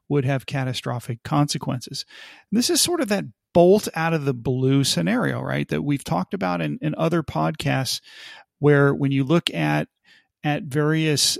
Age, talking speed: 40-59, 165 wpm